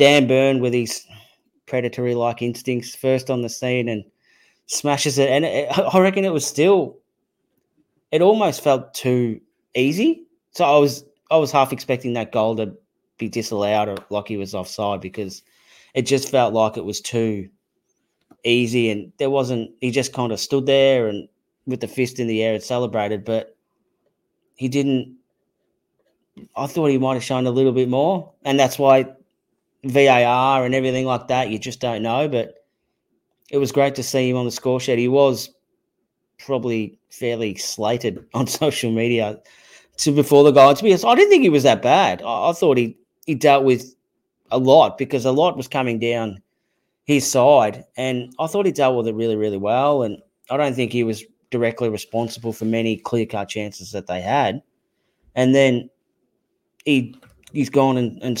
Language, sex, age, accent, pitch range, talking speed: English, male, 20-39, Australian, 115-140 Hz, 185 wpm